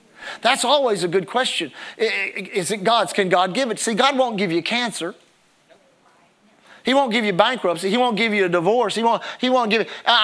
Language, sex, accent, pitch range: English, male, American, 185-245 Hz